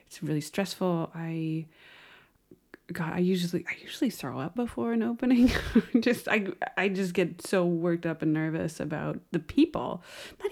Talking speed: 160 wpm